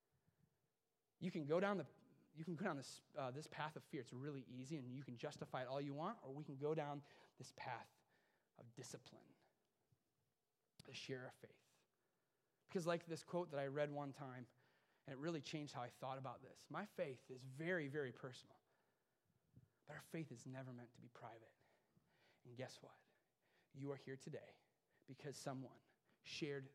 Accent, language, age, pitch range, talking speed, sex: American, English, 30-49, 130-165 Hz, 185 wpm, male